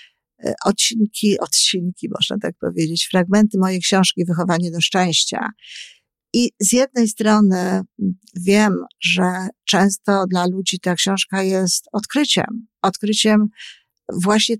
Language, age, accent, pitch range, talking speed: Polish, 50-69, native, 180-210 Hz, 105 wpm